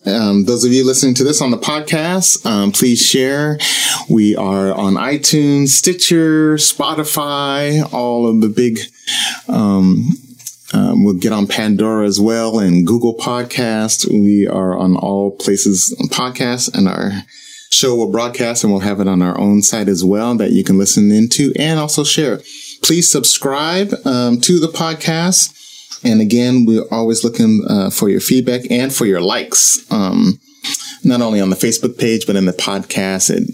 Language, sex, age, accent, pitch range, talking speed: English, male, 30-49, American, 100-155 Hz, 170 wpm